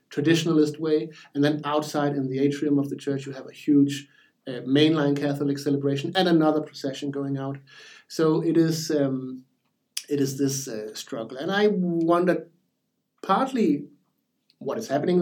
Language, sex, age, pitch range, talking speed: English, male, 60-79, 140-180 Hz, 160 wpm